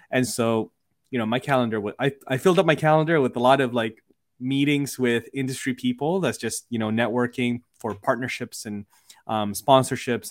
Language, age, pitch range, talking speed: English, 20-39, 110-140 Hz, 180 wpm